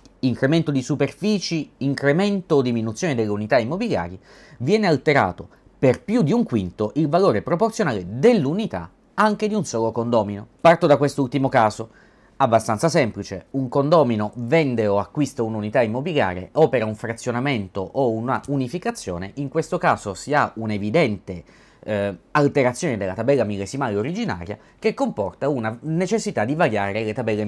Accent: native